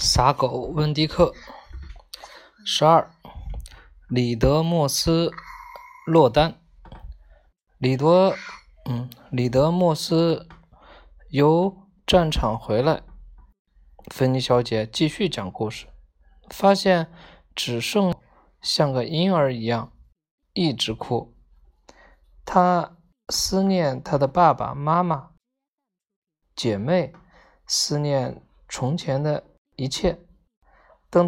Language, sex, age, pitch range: Chinese, male, 20-39, 125-185 Hz